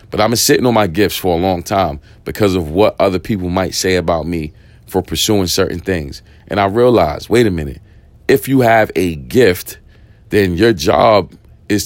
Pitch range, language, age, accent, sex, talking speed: 85-105 Hz, English, 40-59, American, male, 195 wpm